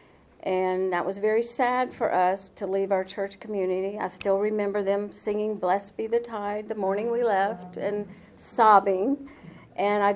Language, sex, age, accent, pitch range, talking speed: English, female, 50-69, American, 190-235 Hz, 170 wpm